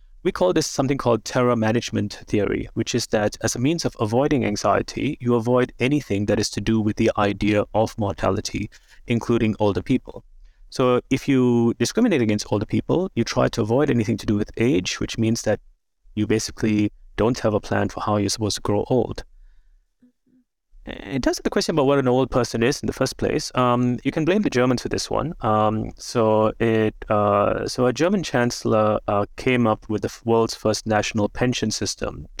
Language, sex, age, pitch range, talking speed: English, male, 30-49, 105-125 Hz, 195 wpm